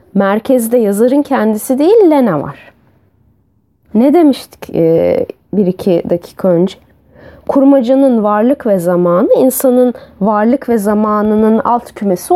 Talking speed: 110 wpm